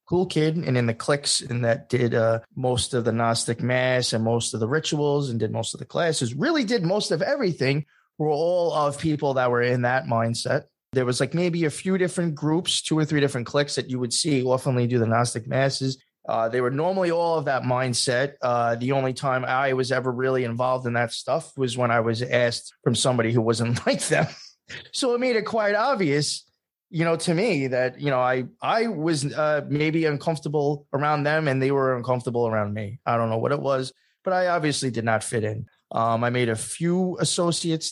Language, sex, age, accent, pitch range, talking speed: English, male, 20-39, American, 115-150 Hz, 220 wpm